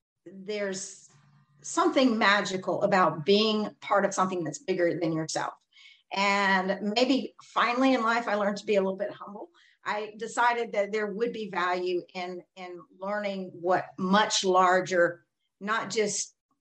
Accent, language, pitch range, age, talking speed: American, English, 185-215 Hz, 50-69, 145 wpm